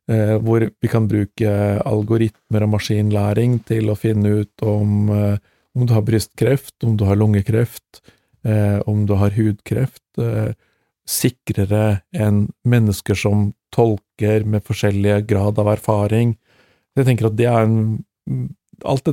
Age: 50-69